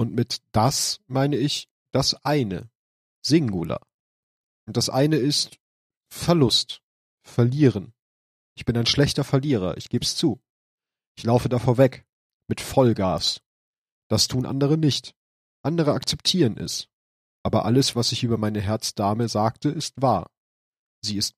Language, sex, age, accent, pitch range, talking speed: German, male, 40-59, German, 110-135 Hz, 130 wpm